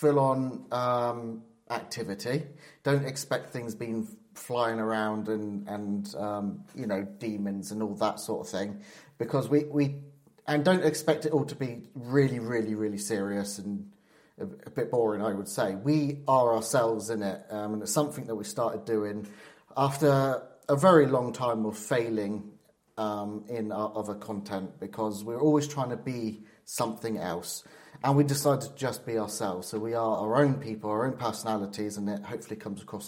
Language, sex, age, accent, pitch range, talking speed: English, male, 30-49, British, 110-140 Hz, 180 wpm